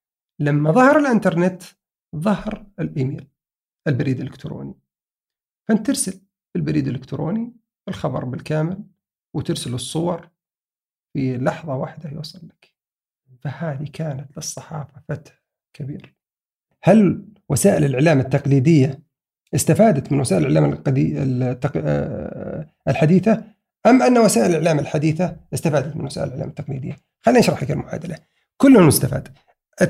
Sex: male